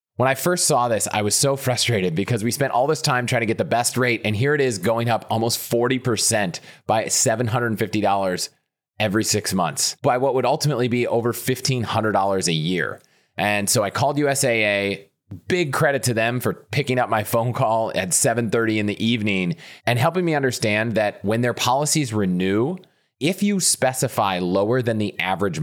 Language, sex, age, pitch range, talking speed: English, male, 30-49, 100-130 Hz, 185 wpm